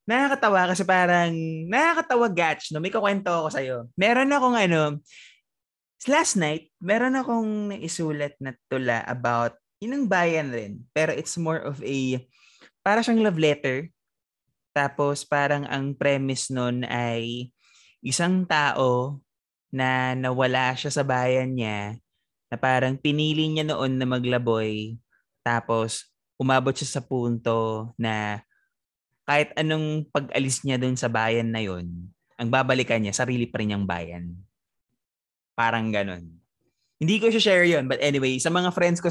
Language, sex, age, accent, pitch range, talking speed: Filipino, male, 20-39, native, 120-165 Hz, 135 wpm